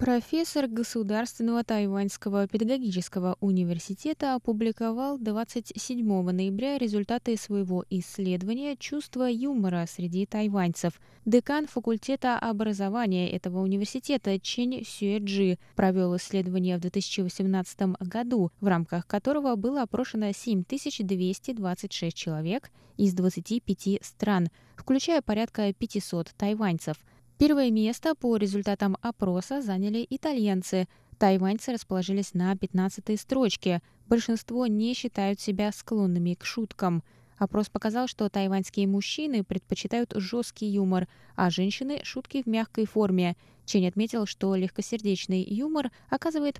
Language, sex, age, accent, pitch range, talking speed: Russian, female, 20-39, native, 185-240 Hz, 105 wpm